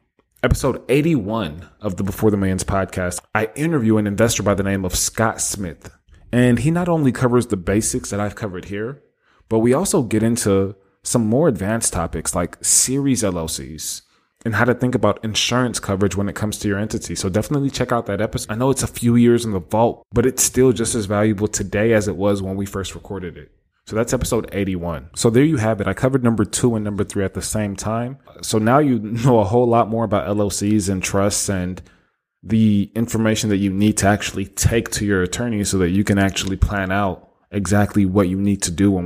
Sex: male